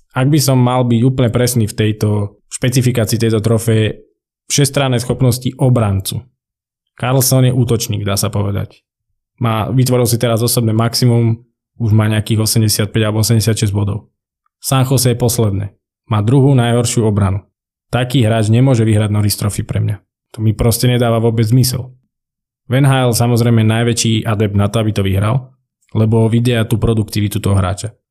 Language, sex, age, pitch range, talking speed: Slovak, male, 20-39, 110-125 Hz, 150 wpm